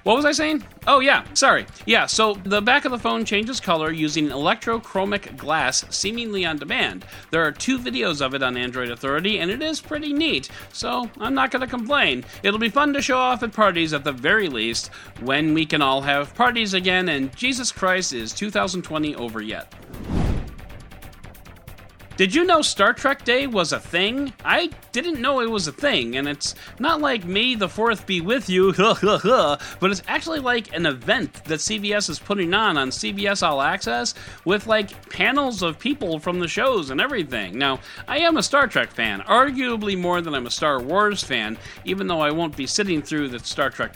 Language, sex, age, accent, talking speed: English, male, 40-59, American, 195 wpm